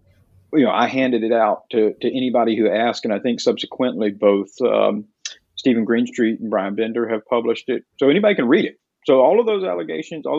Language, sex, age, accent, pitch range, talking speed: English, male, 50-69, American, 115-135 Hz, 210 wpm